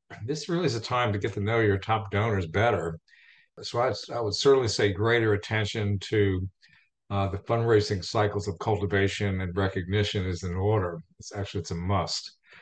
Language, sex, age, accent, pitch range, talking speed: English, male, 50-69, American, 95-115 Hz, 180 wpm